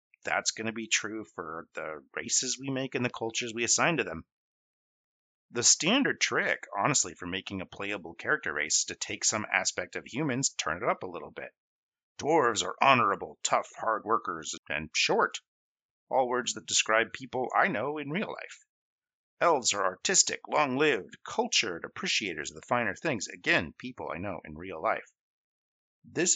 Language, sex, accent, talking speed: English, male, American, 175 wpm